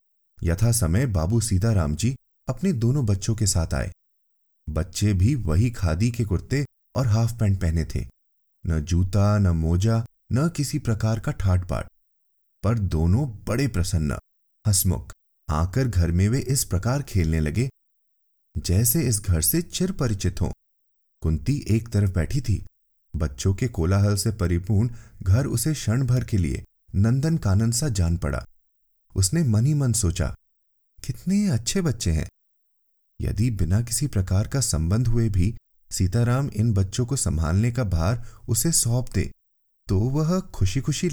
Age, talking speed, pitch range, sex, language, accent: 30-49, 150 wpm, 85-120 Hz, male, Hindi, native